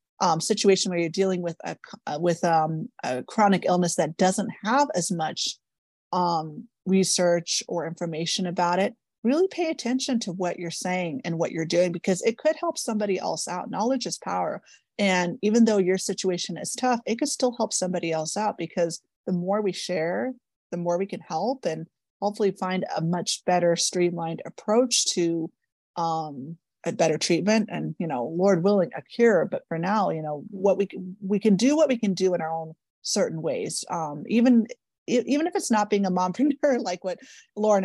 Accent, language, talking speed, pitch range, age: American, English, 190 wpm, 175-220 Hz, 30-49